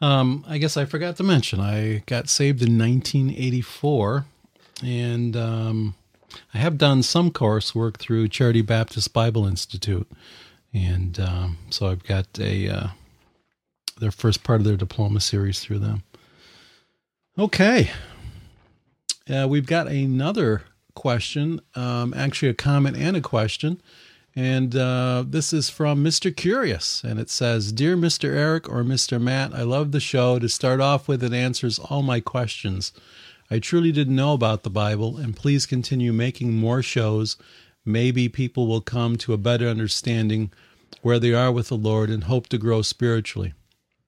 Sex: male